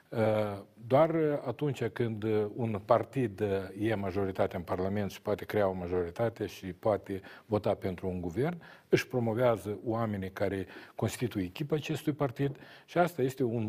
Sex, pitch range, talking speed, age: male, 105-150 Hz, 140 wpm, 50-69